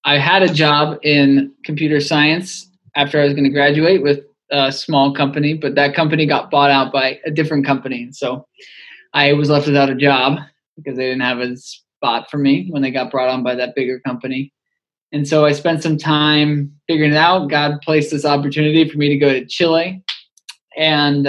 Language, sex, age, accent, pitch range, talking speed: English, male, 20-39, American, 135-155 Hz, 200 wpm